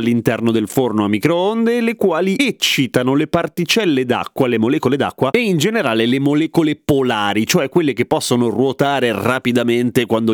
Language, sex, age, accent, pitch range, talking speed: Italian, male, 30-49, native, 120-180 Hz, 155 wpm